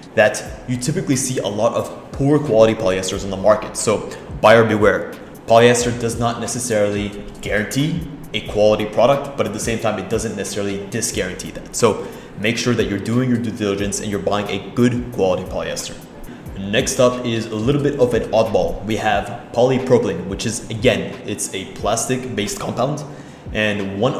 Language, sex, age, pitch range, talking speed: English, male, 20-39, 105-125 Hz, 180 wpm